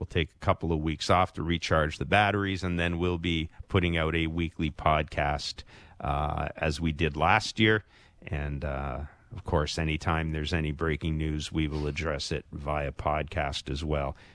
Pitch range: 75-100 Hz